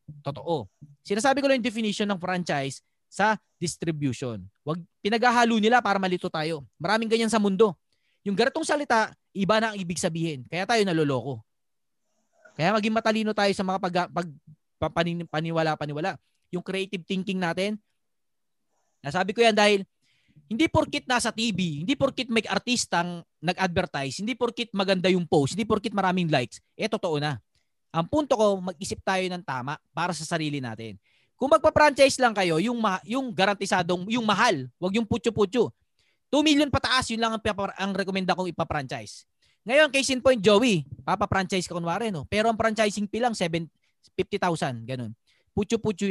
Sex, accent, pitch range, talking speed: male, native, 160-225 Hz, 160 wpm